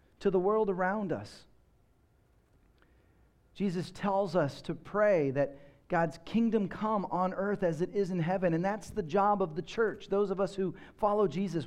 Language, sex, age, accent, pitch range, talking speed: English, male, 40-59, American, 155-200 Hz, 175 wpm